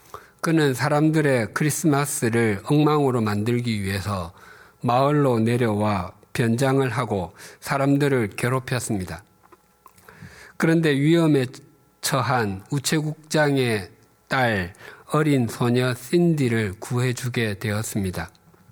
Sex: male